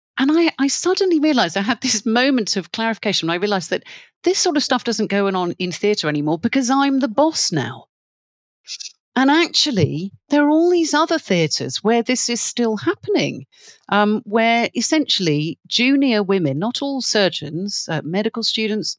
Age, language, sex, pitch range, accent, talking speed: 40-59, English, female, 155-230 Hz, British, 170 wpm